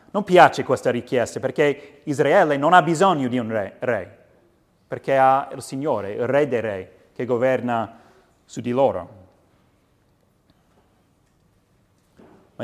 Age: 30-49